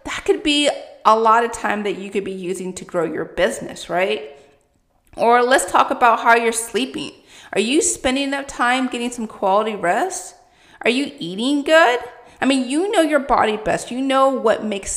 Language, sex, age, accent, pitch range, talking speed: English, female, 30-49, American, 180-245 Hz, 190 wpm